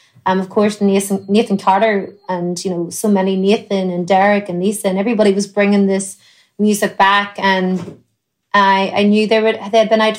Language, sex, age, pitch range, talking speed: English, female, 30-49, 190-210 Hz, 195 wpm